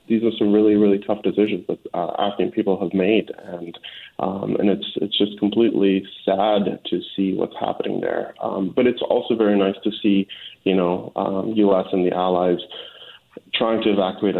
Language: English